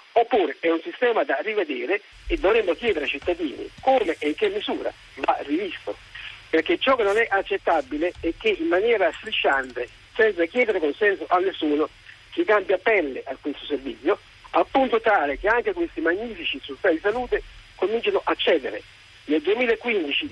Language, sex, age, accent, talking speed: Italian, male, 50-69, native, 160 wpm